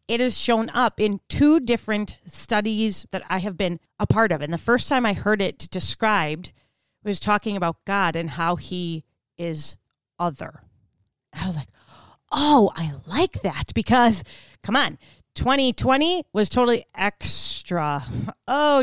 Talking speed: 155 wpm